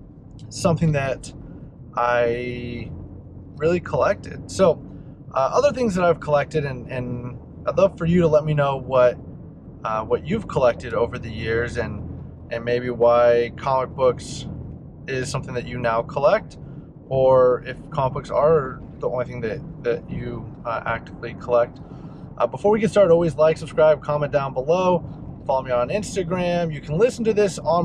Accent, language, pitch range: American, English, 125-160 Hz